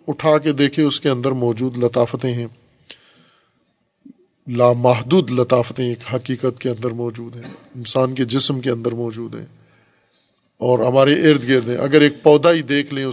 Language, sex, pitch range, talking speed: Urdu, male, 120-150 Hz, 160 wpm